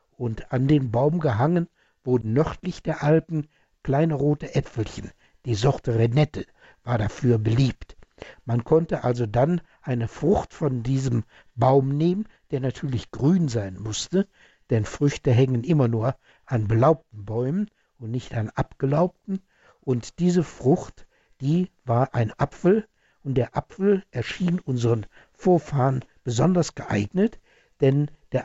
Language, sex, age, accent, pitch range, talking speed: German, male, 60-79, German, 120-165 Hz, 130 wpm